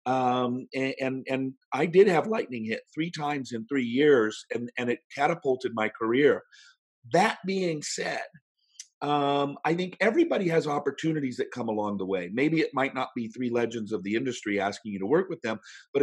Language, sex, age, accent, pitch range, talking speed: English, male, 50-69, American, 120-165 Hz, 190 wpm